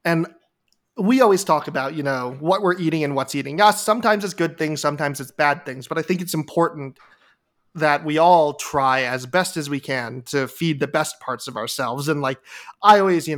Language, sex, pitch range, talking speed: English, male, 140-170 Hz, 220 wpm